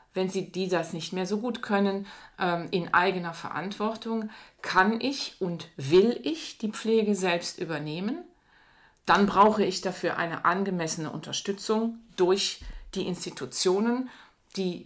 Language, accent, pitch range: German, German, 165-210 Hz